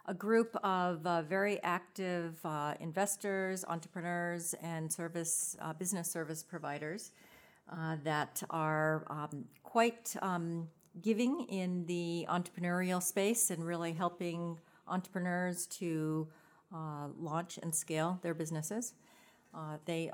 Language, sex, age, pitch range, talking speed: English, female, 50-69, 160-190 Hz, 115 wpm